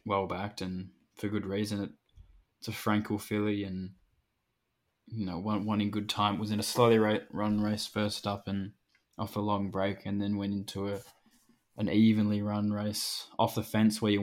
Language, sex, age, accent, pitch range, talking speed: English, male, 10-29, Australian, 95-105 Hz, 195 wpm